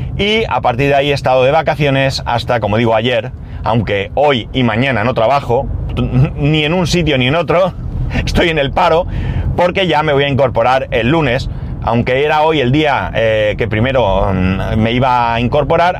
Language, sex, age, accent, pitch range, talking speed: Spanish, male, 30-49, Spanish, 105-140 Hz, 190 wpm